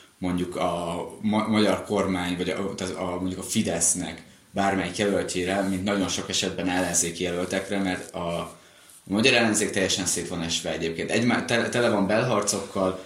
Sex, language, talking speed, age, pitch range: male, Hungarian, 155 wpm, 20-39, 90-100 Hz